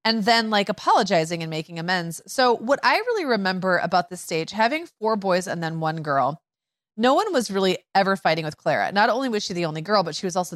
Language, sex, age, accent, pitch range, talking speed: English, female, 30-49, American, 170-215 Hz, 235 wpm